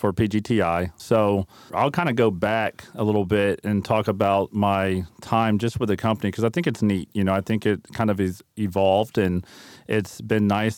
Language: English